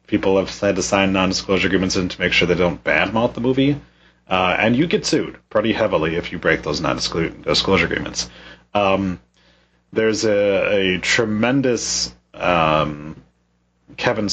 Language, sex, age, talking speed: English, male, 30-49, 150 wpm